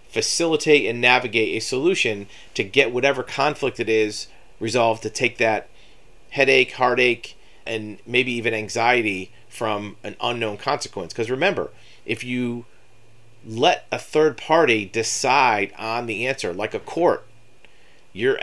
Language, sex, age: English, male, 40-59